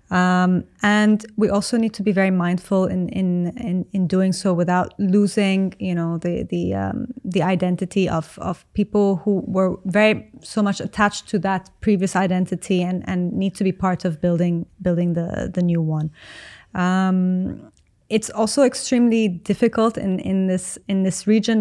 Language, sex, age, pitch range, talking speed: English, female, 20-39, 180-205 Hz, 170 wpm